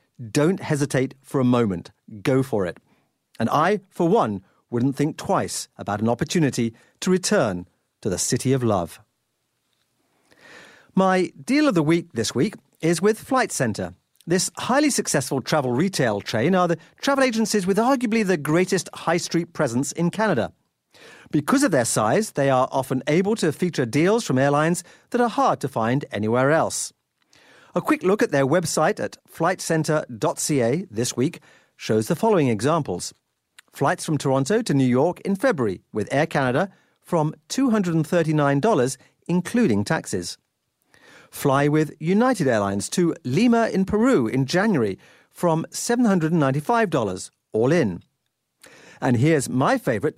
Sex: male